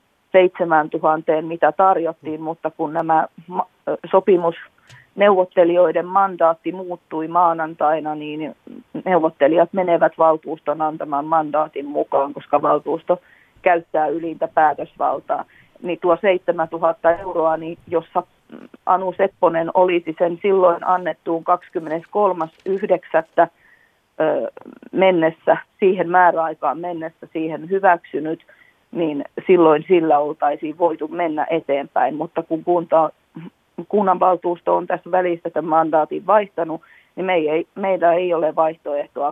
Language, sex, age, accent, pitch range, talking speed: Finnish, female, 30-49, native, 155-180 Hz, 100 wpm